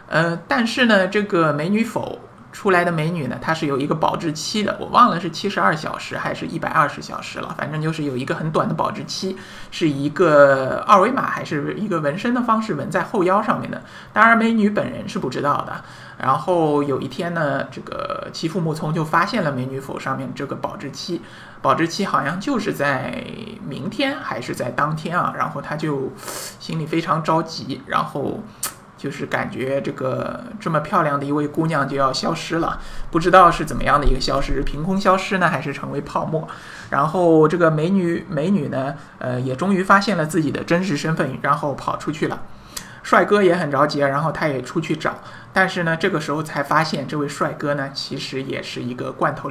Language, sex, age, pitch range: Chinese, male, 50-69, 140-185 Hz